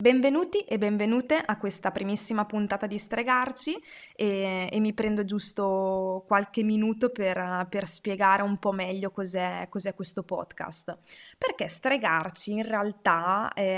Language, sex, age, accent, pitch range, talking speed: Italian, female, 20-39, native, 185-250 Hz, 135 wpm